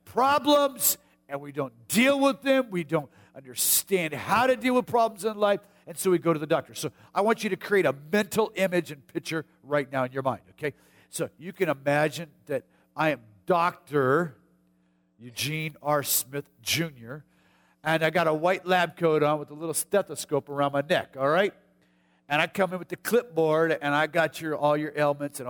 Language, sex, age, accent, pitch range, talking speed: English, male, 50-69, American, 135-185 Hz, 200 wpm